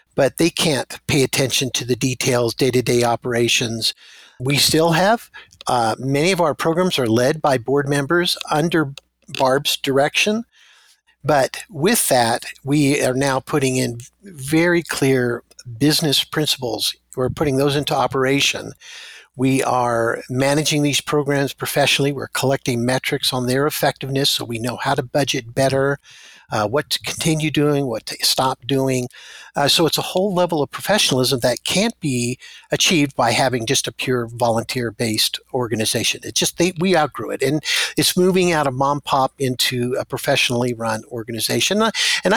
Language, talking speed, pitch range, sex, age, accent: English, 155 wpm, 125-155 Hz, male, 50-69, American